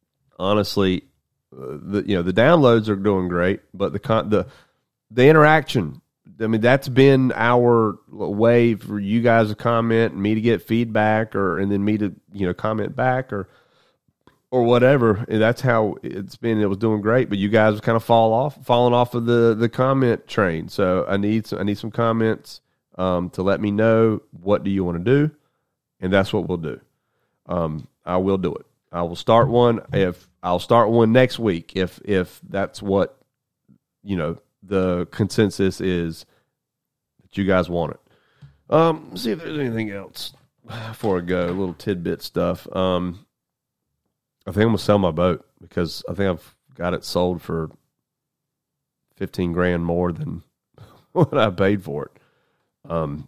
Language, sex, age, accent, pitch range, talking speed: English, male, 30-49, American, 90-115 Hz, 180 wpm